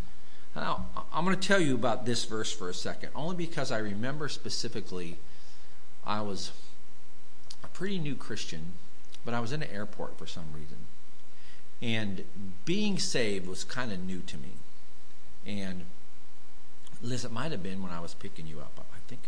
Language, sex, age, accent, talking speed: English, male, 50-69, American, 170 wpm